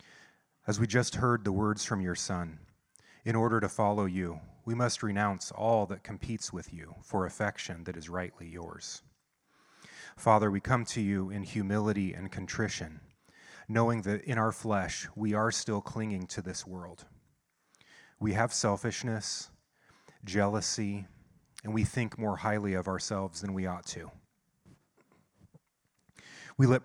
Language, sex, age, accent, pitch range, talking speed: English, male, 30-49, American, 90-110 Hz, 145 wpm